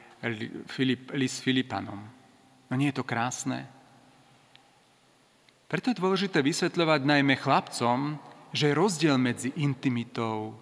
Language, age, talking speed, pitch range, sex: Slovak, 40-59, 105 wpm, 125-160 Hz, male